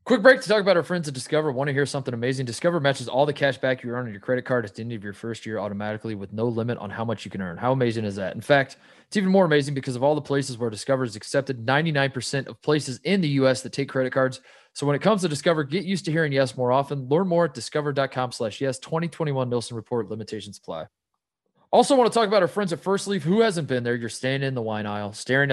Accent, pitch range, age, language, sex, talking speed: American, 120-155 Hz, 20-39, English, male, 275 wpm